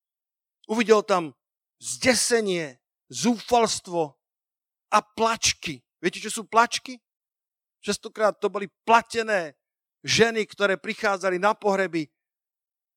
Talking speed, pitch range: 90 wpm, 180-225 Hz